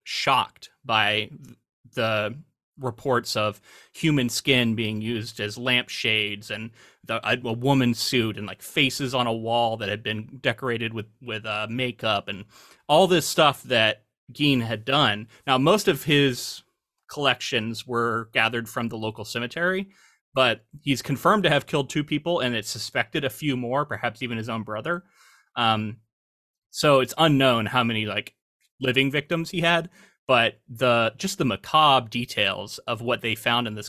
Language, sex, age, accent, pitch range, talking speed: English, male, 30-49, American, 110-135 Hz, 160 wpm